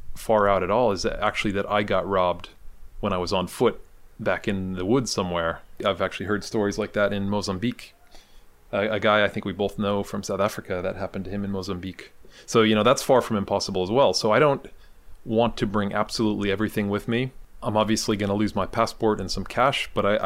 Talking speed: 225 wpm